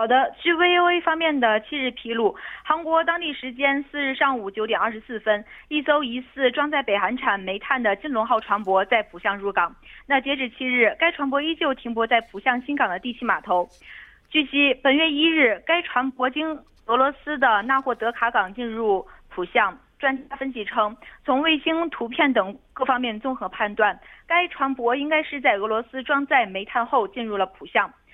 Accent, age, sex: Chinese, 20-39, female